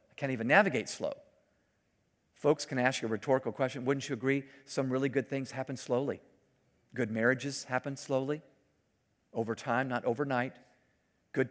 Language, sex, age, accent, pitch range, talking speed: English, male, 50-69, American, 125-160 Hz, 150 wpm